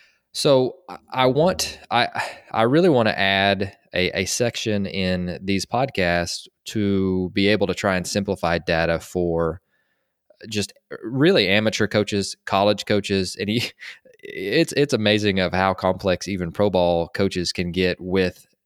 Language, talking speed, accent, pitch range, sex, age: English, 145 wpm, American, 90-105 Hz, male, 20-39